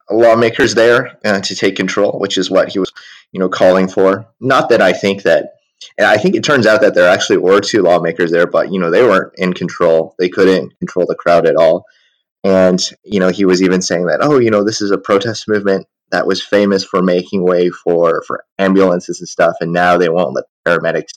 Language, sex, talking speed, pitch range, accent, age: English, male, 225 wpm, 85-100 Hz, American, 20-39